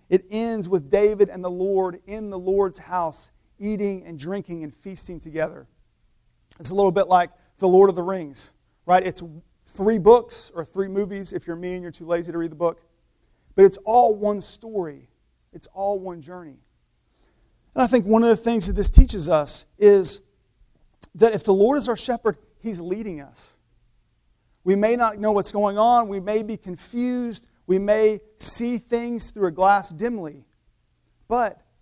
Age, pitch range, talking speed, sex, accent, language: 40-59, 175-215 Hz, 180 wpm, male, American, English